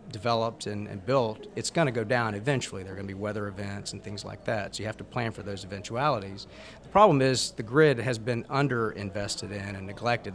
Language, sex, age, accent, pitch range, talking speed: English, male, 40-59, American, 100-120 Hz, 230 wpm